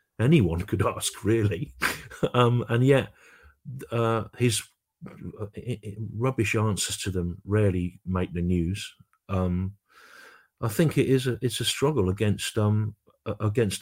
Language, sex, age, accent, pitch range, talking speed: English, male, 50-69, British, 95-115 Hz, 135 wpm